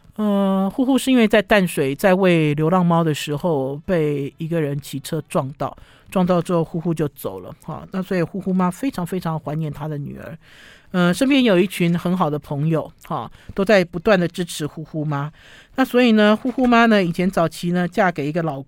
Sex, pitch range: male, 155-200 Hz